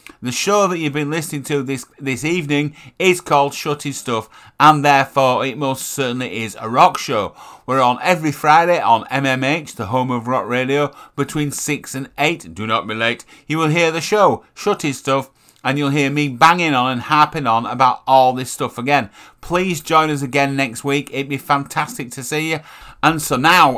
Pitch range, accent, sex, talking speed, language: 130-155 Hz, British, male, 195 wpm, English